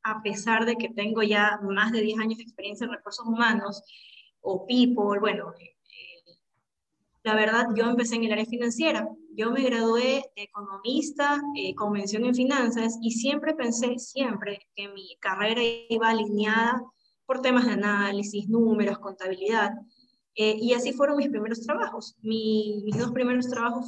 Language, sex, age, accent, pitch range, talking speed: Spanish, female, 20-39, American, 205-240 Hz, 160 wpm